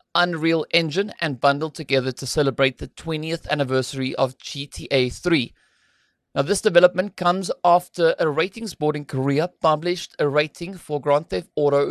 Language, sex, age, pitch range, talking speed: English, male, 30-49, 135-175 Hz, 150 wpm